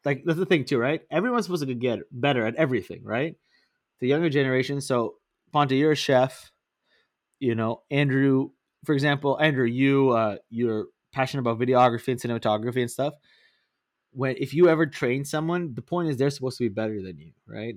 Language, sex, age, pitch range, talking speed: English, male, 20-39, 120-155 Hz, 185 wpm